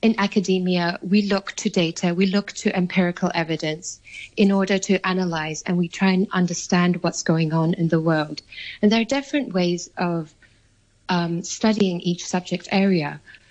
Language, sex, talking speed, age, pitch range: English, female, 165 wpm, 30-49, 180-210 Hz